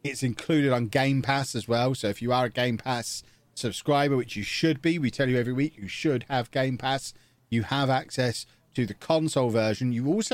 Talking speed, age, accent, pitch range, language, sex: 220 wpm, 40-59, British, 105-130 Hz, English, male